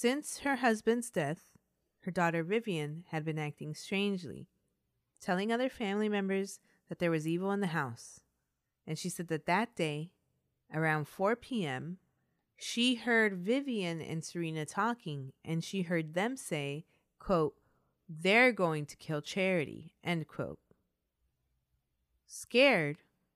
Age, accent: 30-49, American